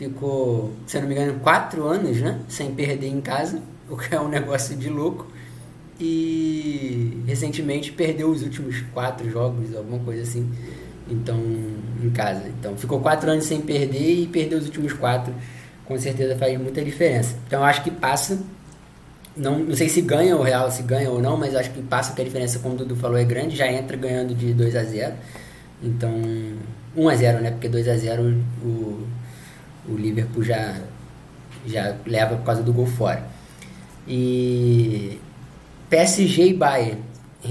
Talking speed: 165 wpm